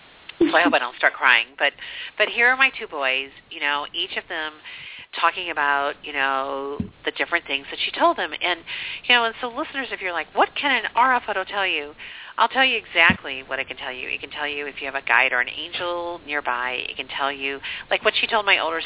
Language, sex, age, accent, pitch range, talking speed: English, female, 40-59, American, 135-195 Hz, 250 wpm